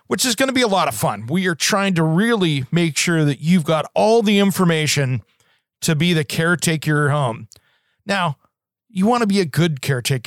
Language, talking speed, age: English, 215 wpm, 40-59